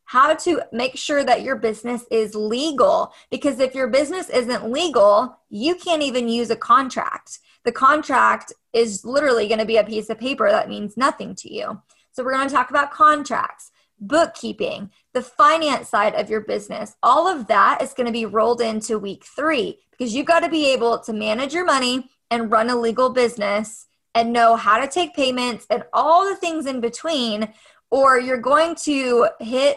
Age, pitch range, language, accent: 20-39, 225-295 Hz, English, American